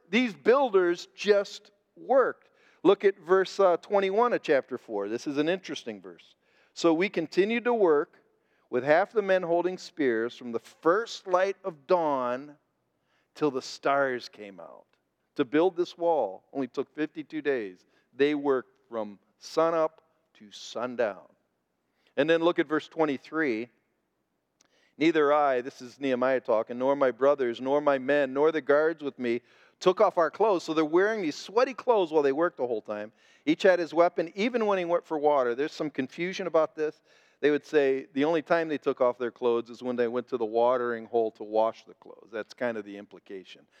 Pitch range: 140-230 Hz